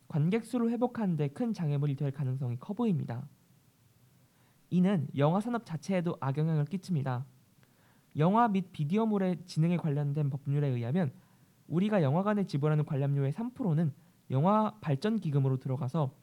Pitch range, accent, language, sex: 140-185 Hz, native, Korean, male